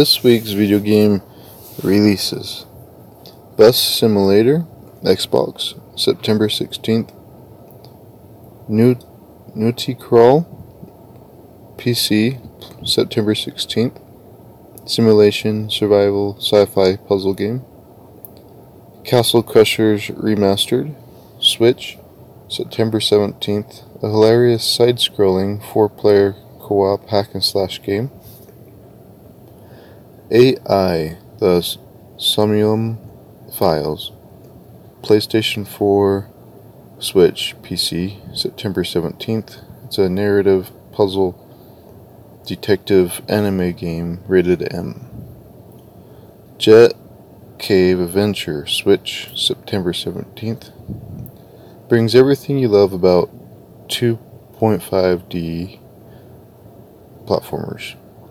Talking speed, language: 70 wpm, English